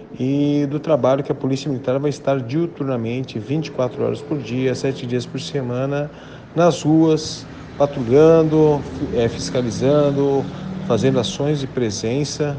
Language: Portuguese